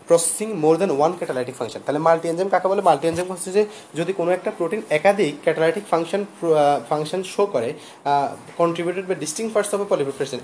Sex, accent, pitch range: male, native, 160-185 Hz